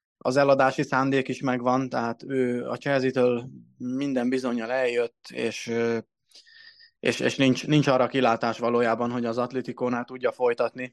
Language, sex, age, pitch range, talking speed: Hungarian, male, 20-39, 120-135 Hz, 135 wpm